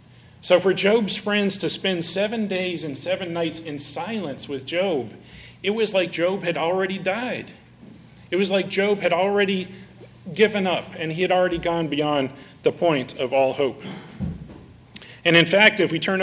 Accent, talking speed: American, 175 wpm